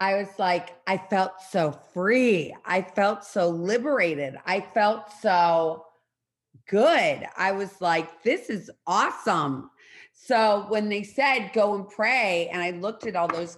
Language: English